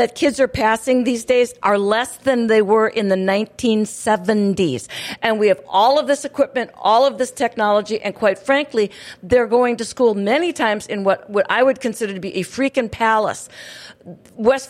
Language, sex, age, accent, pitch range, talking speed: English, female, 50-69, American, 210-265 Hz, 190 wpm